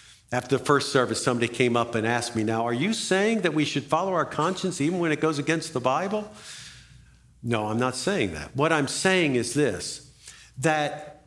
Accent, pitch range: American, 115-160 Hz